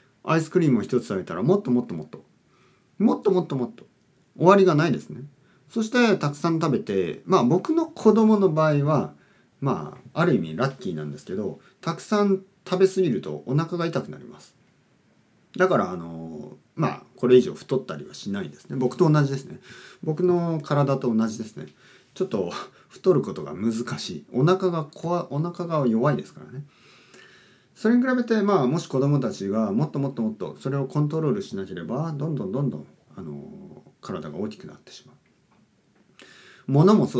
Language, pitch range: Japanese, 120-185 Hz